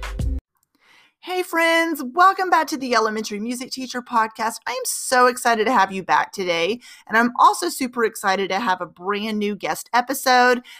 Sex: female